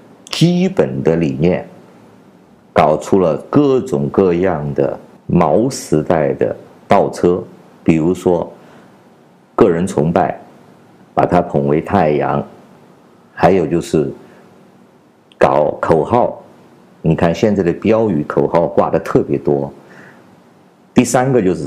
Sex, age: male, 50-69